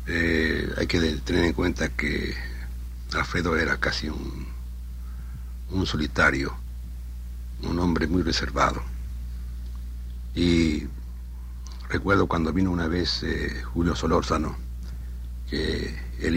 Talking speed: 100 wpm